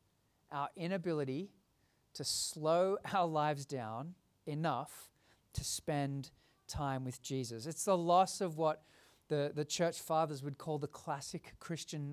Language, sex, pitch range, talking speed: English, male, 150-185 Hz, 135 wpm